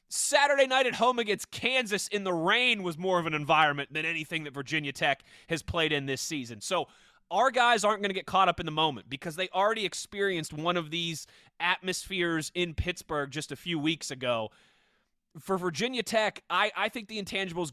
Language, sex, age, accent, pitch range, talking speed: English, male, 20-39, American, 165-230 Hz, 200 wpm